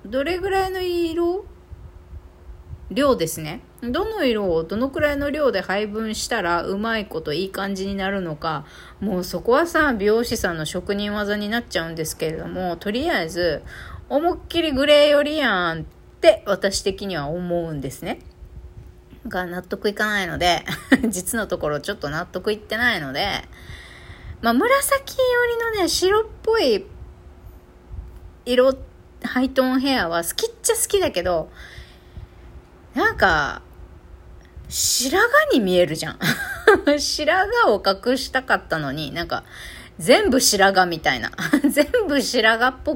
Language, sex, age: Japanese, female, 30-49